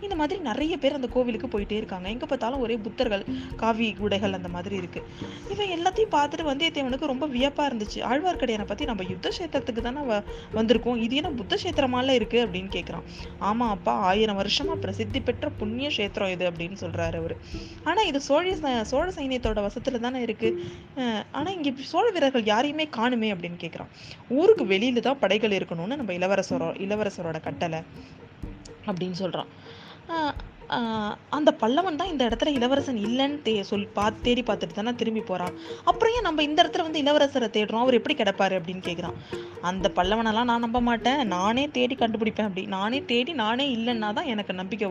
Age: 20-39